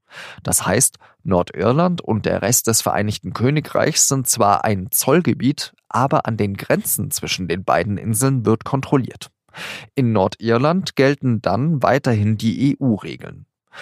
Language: German